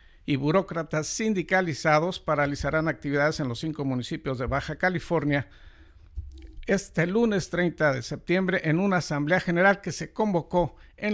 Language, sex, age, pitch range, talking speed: Spanish, male, 60-79, 140-180 Hz, 135 wpm